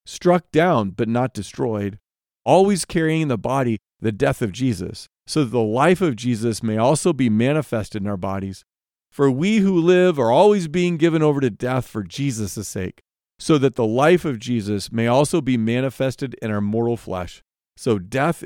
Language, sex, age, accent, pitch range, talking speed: English, male, 40-59, American, 110-155 Hz, 180 wpm